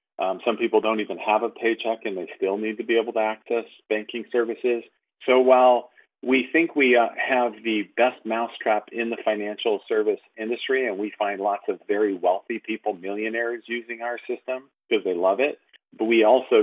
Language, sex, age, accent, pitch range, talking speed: English, male, 40-59, American, 105-130 Hz, 190 wpm